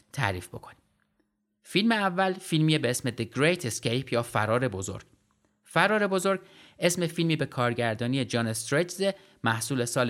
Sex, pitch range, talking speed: male, 115-160 Hz, 135 wpm